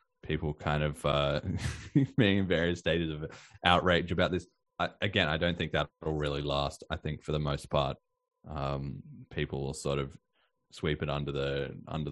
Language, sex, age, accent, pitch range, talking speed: English, male, 20-39, Australian, 80-100 Hz, 180 wpm